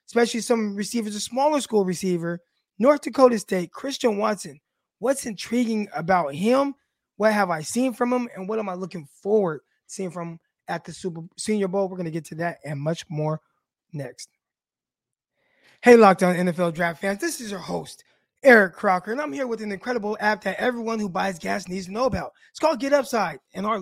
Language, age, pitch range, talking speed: English, 20-39, 190-250 Hz, 200 wpm